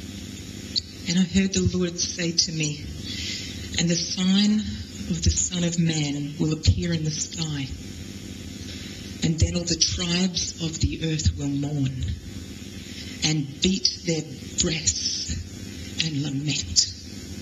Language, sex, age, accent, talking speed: English, female, 40-59, Australian, 130 wpm